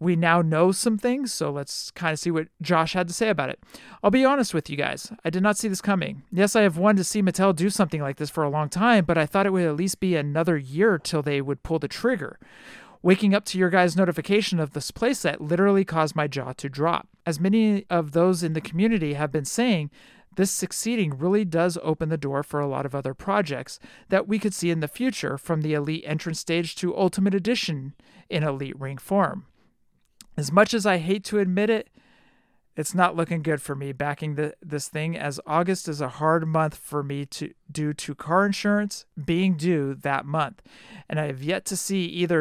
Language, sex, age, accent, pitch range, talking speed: English, male, 40-59, American, 150-195 Hz, 225 wpm